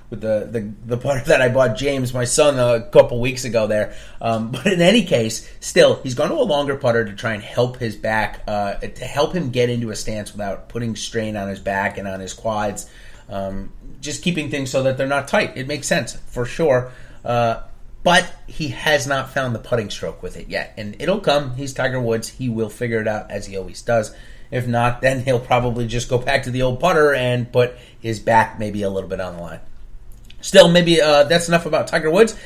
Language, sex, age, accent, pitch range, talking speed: English, male, 30-49, American, 110-140 Hz, 225 wpm